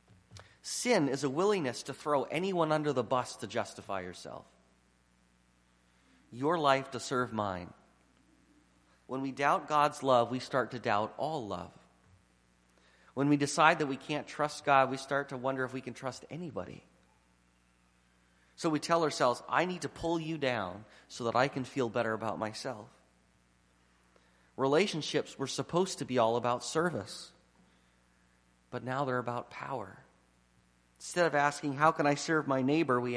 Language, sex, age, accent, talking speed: English, male, 30-49, American, 155 wpm